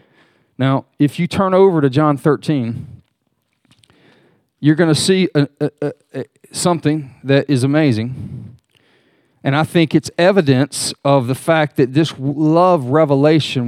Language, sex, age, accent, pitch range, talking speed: English, male, 40-59, American, 125-155 Hz, 125 wpm